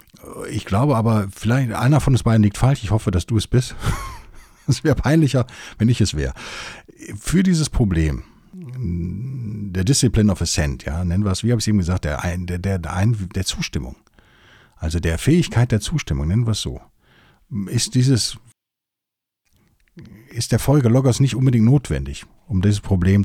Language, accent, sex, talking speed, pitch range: German, German, male, 175 wpm, 95-125 Hz